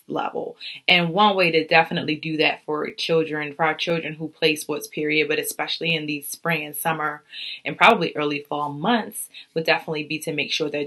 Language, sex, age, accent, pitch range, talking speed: English, female, 20-39, American, 155-205 Hz, 200 wpm